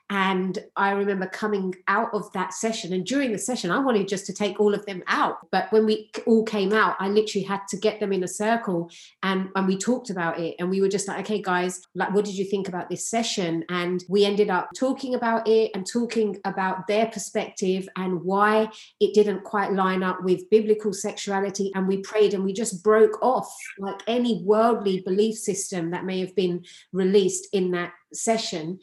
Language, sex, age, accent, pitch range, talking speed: English, female, 30-49, British, 185-215 Hz, 210 wpm